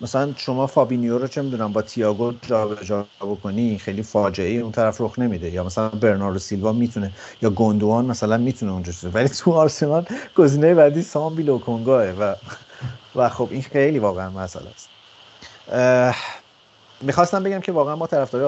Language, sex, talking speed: Persian, male, 155 wpm